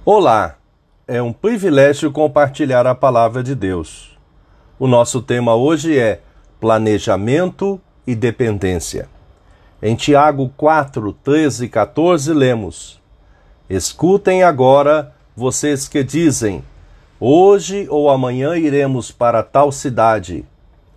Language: Portuguese